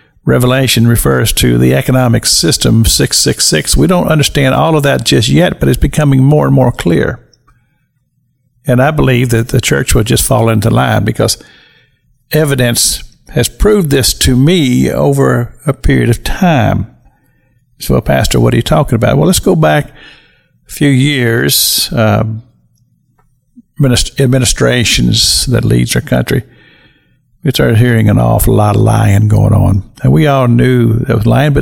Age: 50-69